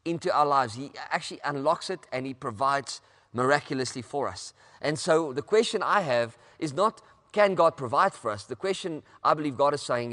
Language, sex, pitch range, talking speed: English, male, 130-185 Hz, 195 wpm